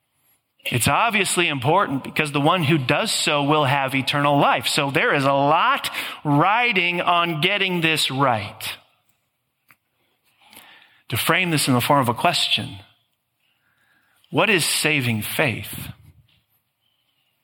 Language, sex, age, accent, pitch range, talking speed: English, male, 40-59, American, 125-150 Hz, 125 wpm